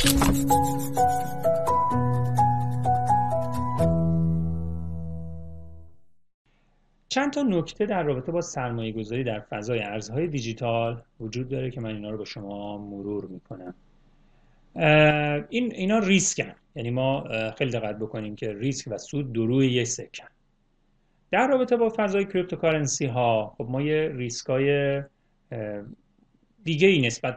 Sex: male